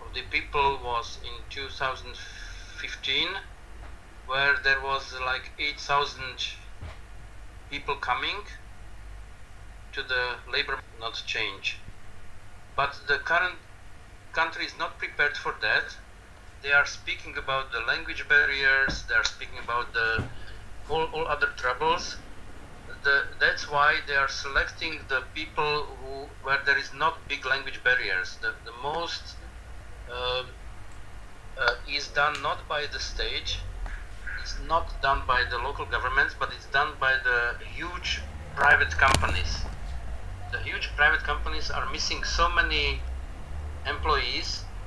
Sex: male